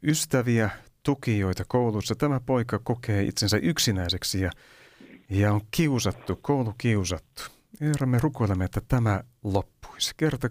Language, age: Finnish, 60-79